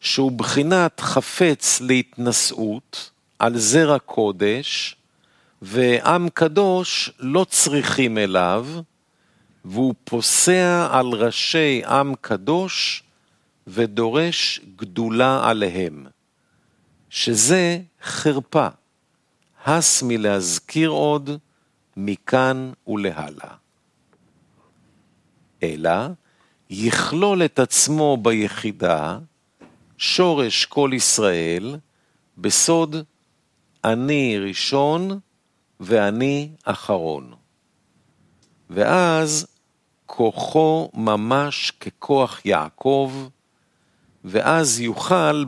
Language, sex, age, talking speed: Hebrew, male, 50-69, 65 wpm